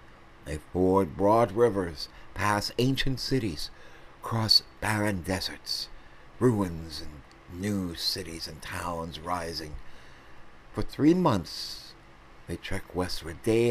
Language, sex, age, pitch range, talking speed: English, male, 60-79, 65-105 Hz, 105 wpm